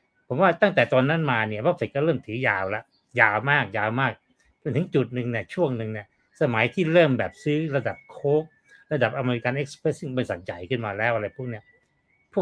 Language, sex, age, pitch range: Thai, male, 60-79, 115-160 Hz